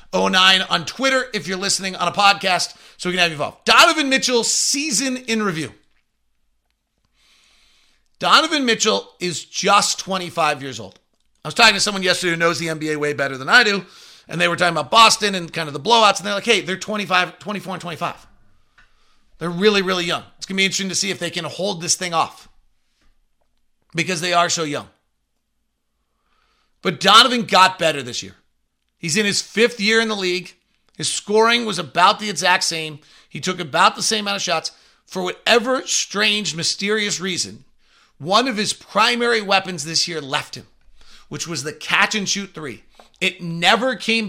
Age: 40-59